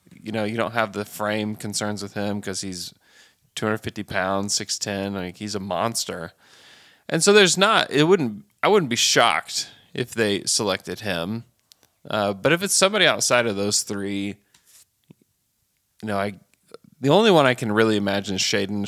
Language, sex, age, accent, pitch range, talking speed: English, male, 20-39, American, 95-110 Hz, 170 wpm